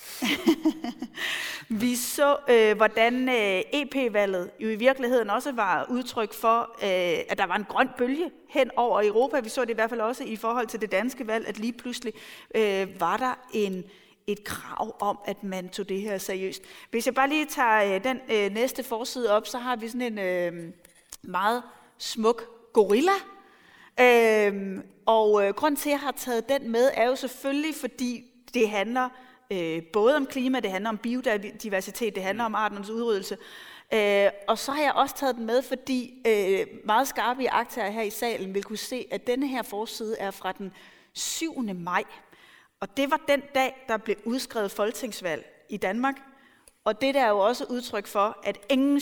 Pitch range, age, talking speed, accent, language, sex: 205-260 Hz, 30-49, 180 wpm, native, Danish, female